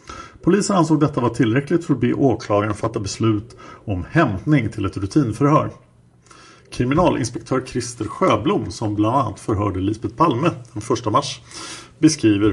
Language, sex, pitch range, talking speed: Swedish, male, 105-135 Hz, 140 wpm